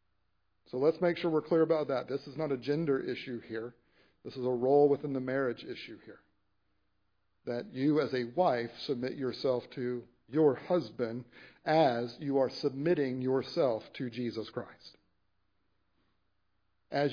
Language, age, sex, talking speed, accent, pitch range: English, 50-69, male, 150 wpm, American, 105-155 Hz